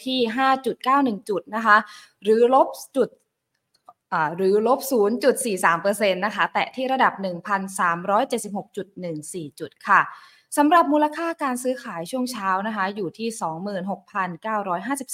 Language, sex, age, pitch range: Thai, female, 20-39, 180-235 Hz